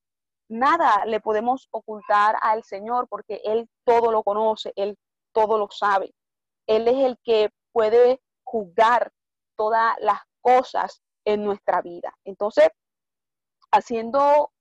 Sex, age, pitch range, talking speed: female, 30-49, 200-230 Hz, 120 wpm